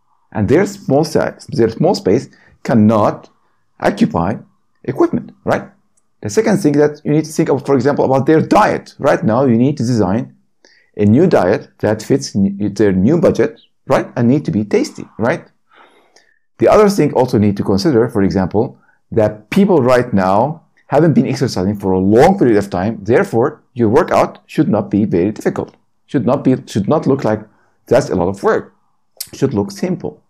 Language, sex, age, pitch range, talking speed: English, male, 50-69, 105-145 Hz, 180 wpm